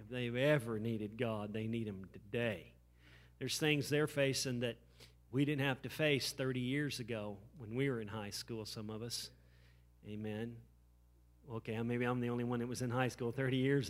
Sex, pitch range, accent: male, 110-150 Hz, American